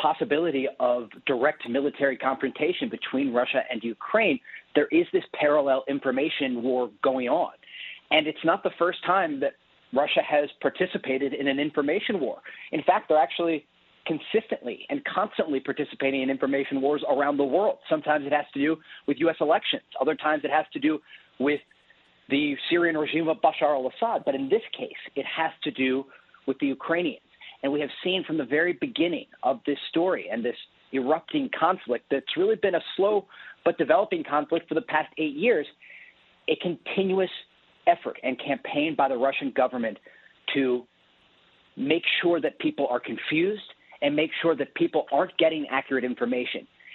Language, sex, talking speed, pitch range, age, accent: English, male, 165 wpm, 140-190 Hz, 40-59, American